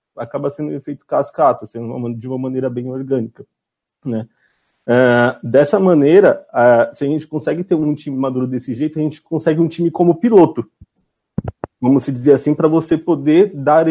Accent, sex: Brazilian, male